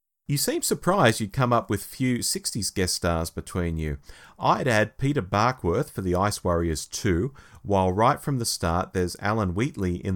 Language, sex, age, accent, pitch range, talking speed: English, male, 30-49, Australian, 90-120 Hz, 185 wpm